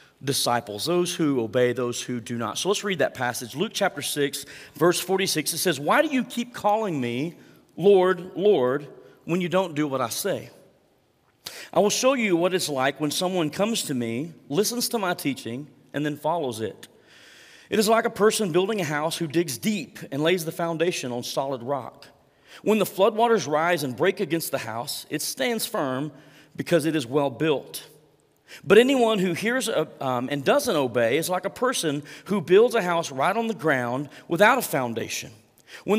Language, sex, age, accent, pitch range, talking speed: English, male, 40-59, American, 125-180 Hz, 185 wpm